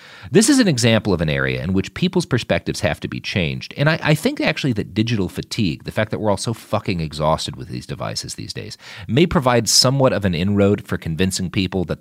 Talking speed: 230 wpm